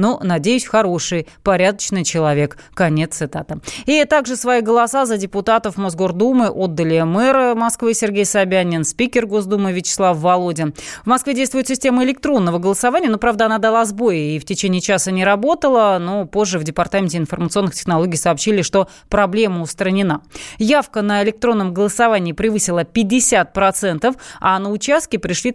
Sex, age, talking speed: female, 20-39, 140 wpm